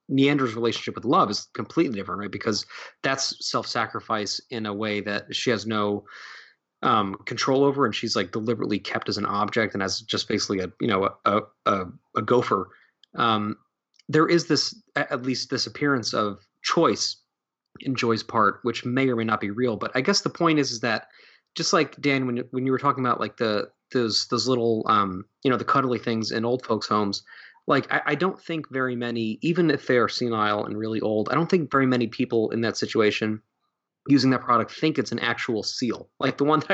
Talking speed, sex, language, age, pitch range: 210 wpm, male, English, 30-49, 110-140 Hz